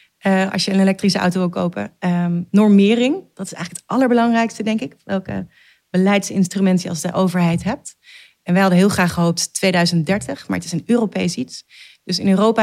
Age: 30-49